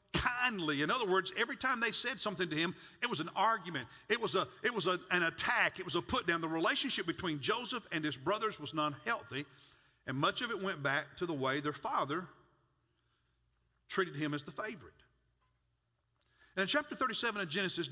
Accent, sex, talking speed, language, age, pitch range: American, male, 200 wpm, English, 50-69, 155-210 Hz